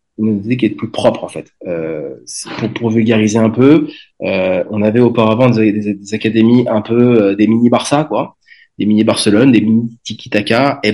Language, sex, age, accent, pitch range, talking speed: French, male, 30-49, French, 90-120 Hz, 175 wpm